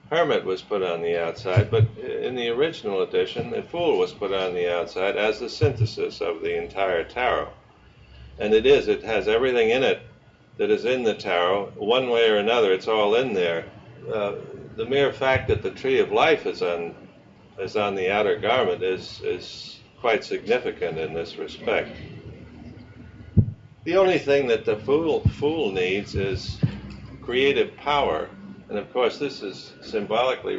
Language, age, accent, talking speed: English, 50-69, American, 170 wpm